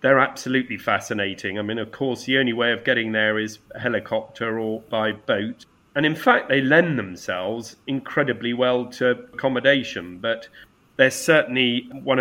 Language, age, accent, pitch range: English, 40-59, British, 115-140 Hz